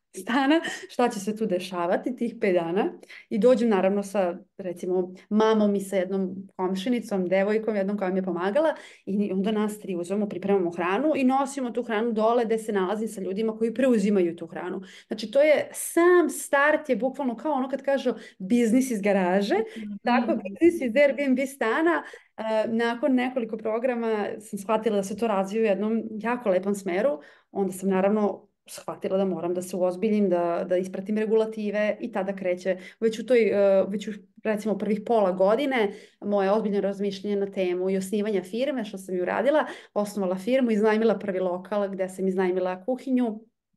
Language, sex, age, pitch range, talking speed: Croatian, female, 30-49, 190-235 Hz, 175 wpm